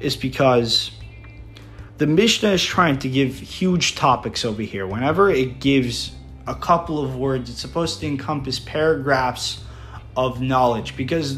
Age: 20-39